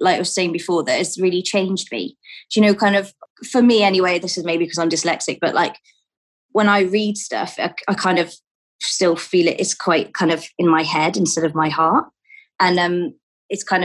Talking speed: 225 wpm